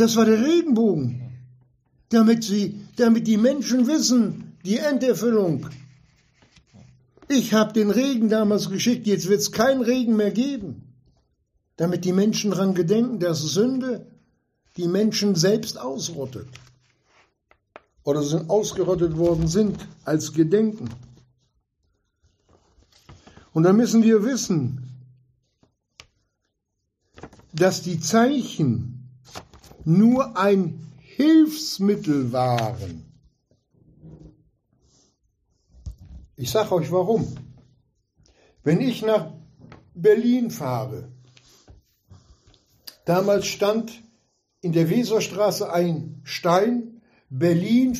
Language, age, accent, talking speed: German, 60-79, German, 90 wpm